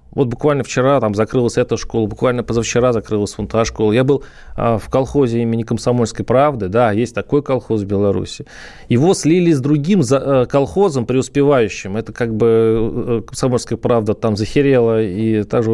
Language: Russian